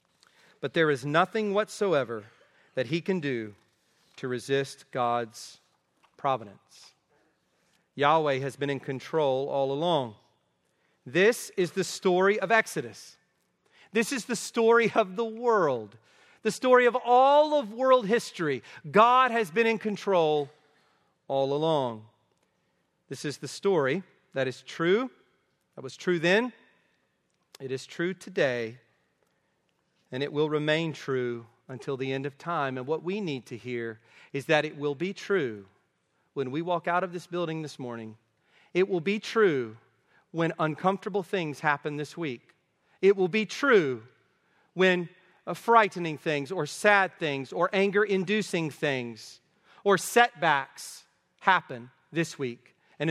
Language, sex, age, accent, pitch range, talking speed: English, male, 40-59, American, 135-195 Hz, 140 wpm